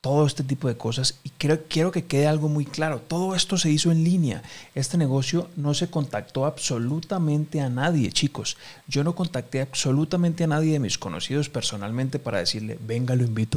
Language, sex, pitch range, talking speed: Spanish, male, 115-150 Hz, 185 wpm